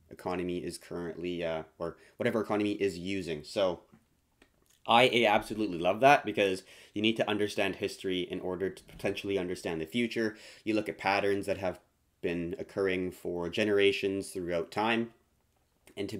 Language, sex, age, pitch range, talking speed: English, male, 20-39, 90-110 Hz, 150 wpm